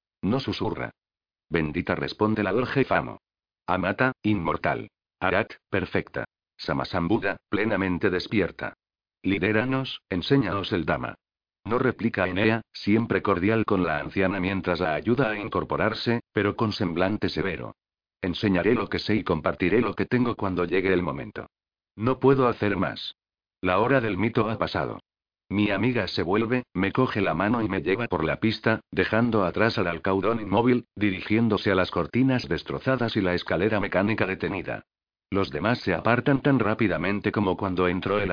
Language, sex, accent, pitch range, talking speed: Spanish, male, Spanish, 95-115 Hz, 150 wpm